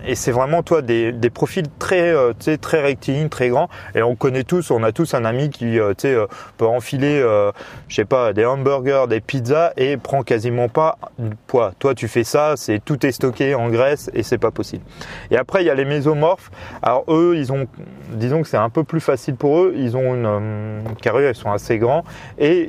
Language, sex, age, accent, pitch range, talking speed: French, male, 30-49, French, 120-150 Hz, 225 wpm